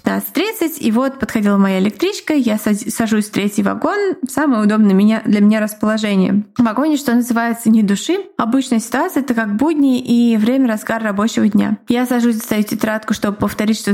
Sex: female